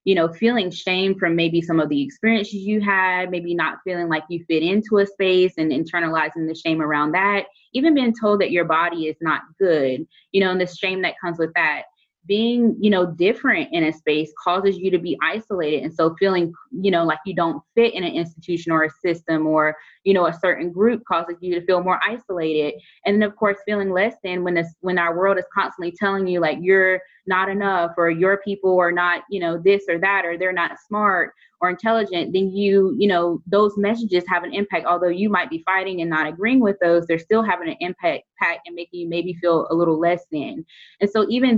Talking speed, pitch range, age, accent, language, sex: 225 wpm, 165-195 Hz, 20-39, American, English, female